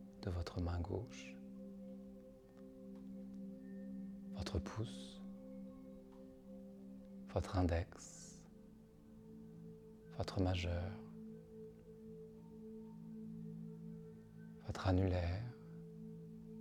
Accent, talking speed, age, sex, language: French, 45 wpm, 40-59, male, French